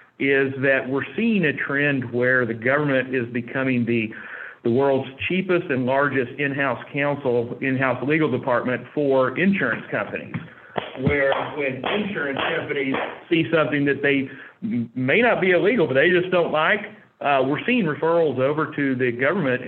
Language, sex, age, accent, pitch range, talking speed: English, male, 50-69, American, 130-155 Hz, 150 wpm